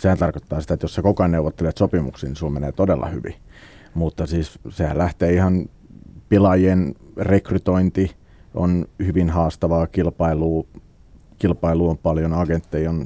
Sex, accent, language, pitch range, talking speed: male, native, Finnish, 80-95 Hz, 140 wpm